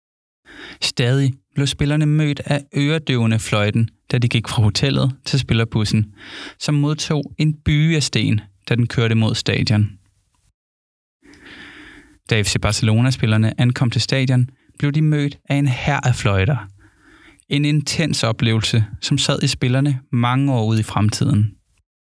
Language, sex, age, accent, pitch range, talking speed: Danish, male, 20-39, native, 110-140 Hz, 135 wpm